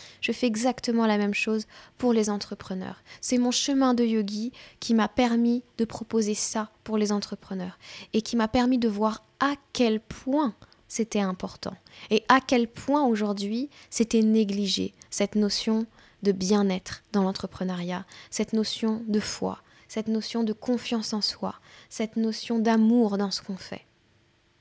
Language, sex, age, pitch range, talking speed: French, female, 10-29, 200-240 Hz, 155 wpm